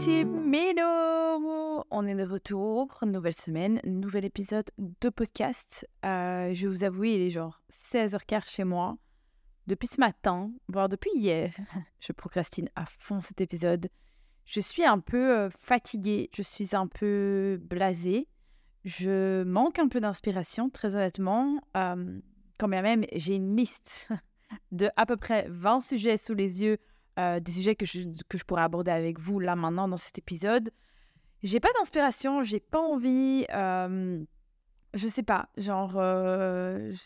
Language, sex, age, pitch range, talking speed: French, female, 20-39, 185-240 Hz, 160 wpm